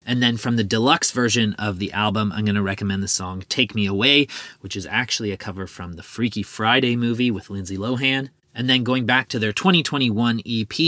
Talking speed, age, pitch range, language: 210 wpm, 30-49, 105-130 Hz, English